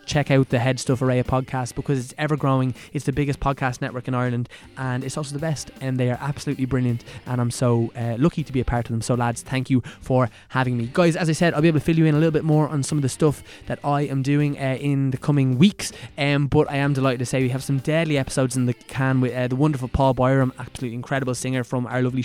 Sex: male